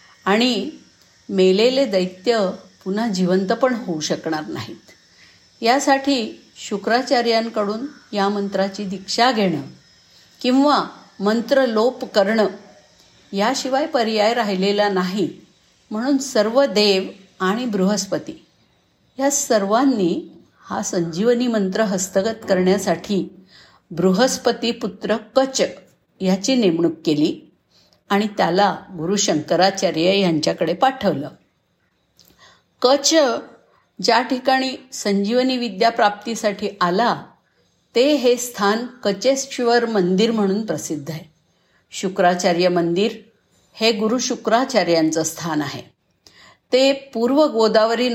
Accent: native